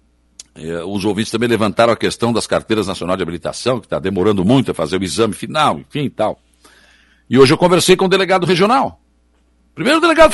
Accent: Brazilian